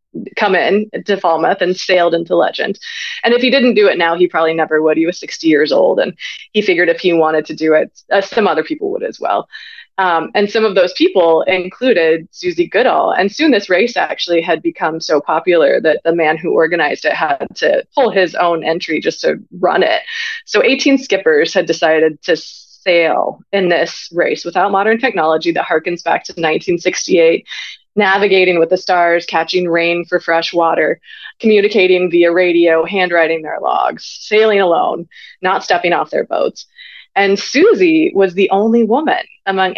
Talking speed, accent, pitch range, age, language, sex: 185 wpm, American, 170-225 Hz, 20-39, English, female